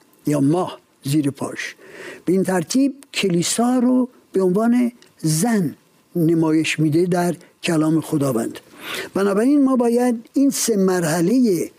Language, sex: Persian, male